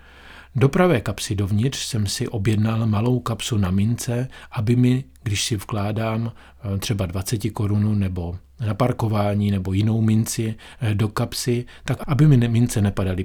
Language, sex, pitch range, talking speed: Czech, male, 95-120 Hz, 145 wpm